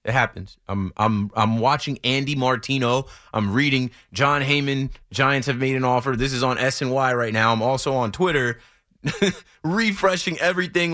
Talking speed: 160 wpm